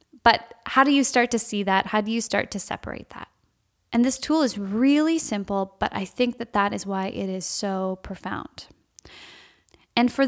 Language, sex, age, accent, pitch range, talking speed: English, female, 10-29, American, 200-255 Hz, 200 wpm